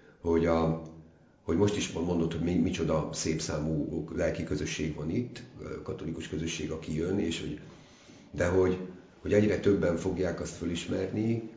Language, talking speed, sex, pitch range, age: Hungarian, 145 wpm, male, 80-100 Hz, 50-69